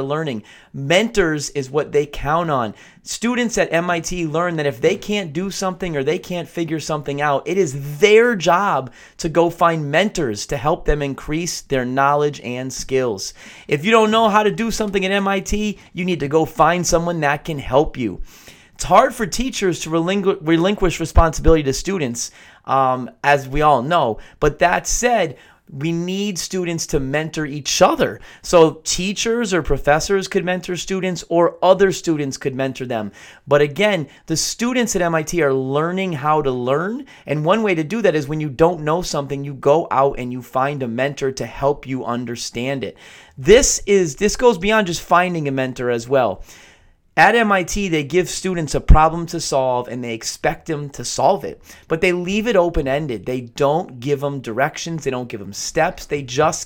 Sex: male